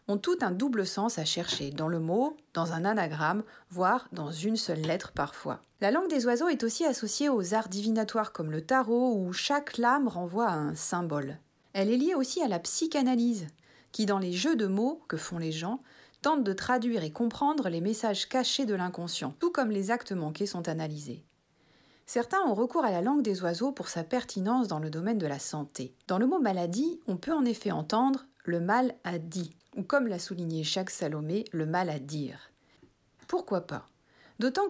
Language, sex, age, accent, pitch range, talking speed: French, female, 40-59, French, 170-255 Hz, 205 wpm